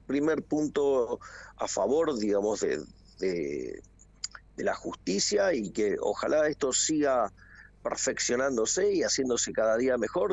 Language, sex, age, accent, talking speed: Spanish, male, 50-69, Argentinian, 120 wpm